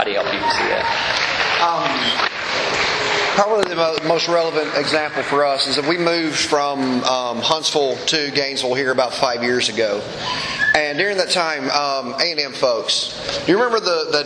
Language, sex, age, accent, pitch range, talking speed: English, male, 30-49, American, 135-160 Hz, 145 wpm